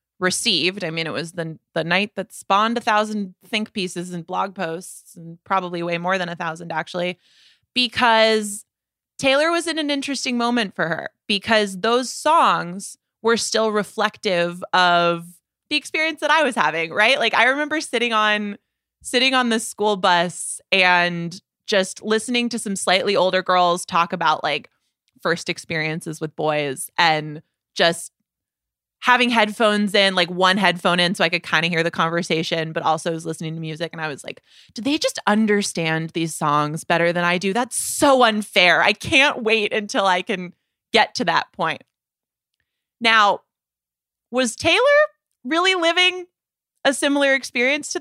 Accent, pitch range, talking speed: American, 170-245 Hz, 165 wpm